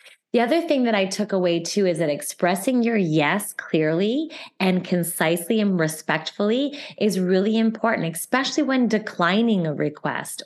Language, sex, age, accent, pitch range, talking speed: English, female, 20-39, American, 165-205 Hz, 150 wpm